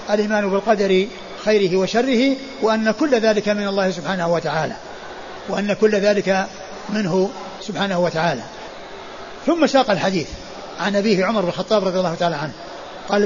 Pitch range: 195-240 Hz